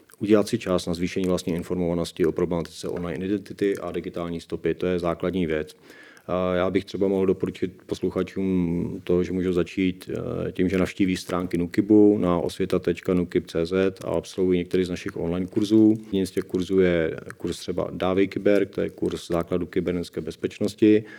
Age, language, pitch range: 40-59, Czech, 90-95 Hz